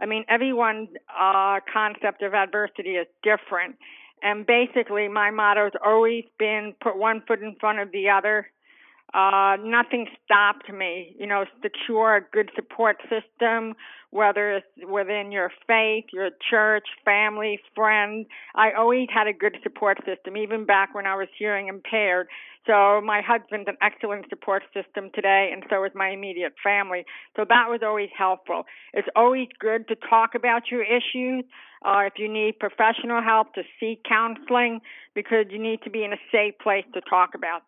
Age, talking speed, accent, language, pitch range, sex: 50-69, 165 wpm, American, English, 195-225 Hz, female